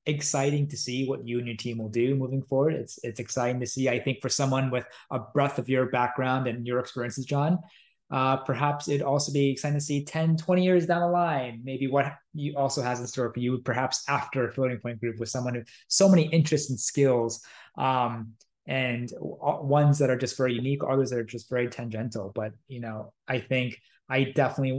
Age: 20-39